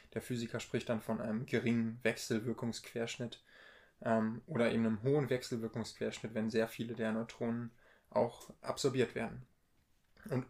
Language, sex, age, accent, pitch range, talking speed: German, male, 20-39, German, 115-125 Hz, 130 wpm